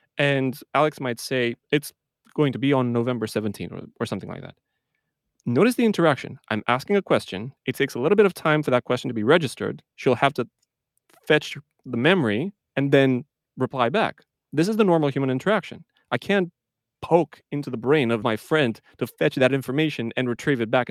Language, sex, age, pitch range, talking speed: English, male, 30-49, 115-150 Hz, 200 wpm